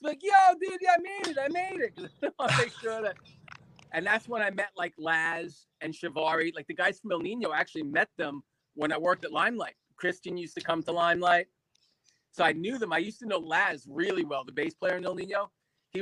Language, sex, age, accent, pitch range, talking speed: English, male, 30-49, American, 155-200 Hz, 230 wpm